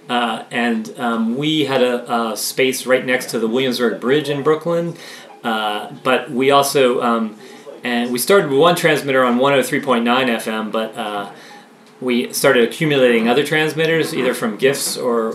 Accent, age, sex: American, 30-49, male